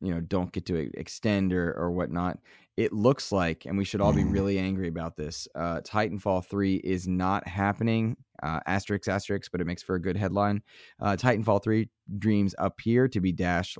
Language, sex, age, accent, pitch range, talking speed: English, male, 20-39, American, 90-105 Hz, 195 wpm